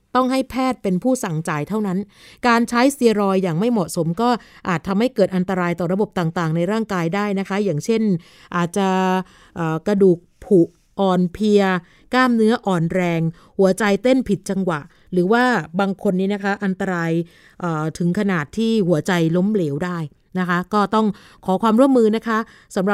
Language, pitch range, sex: Thai, 180-220 Hz, female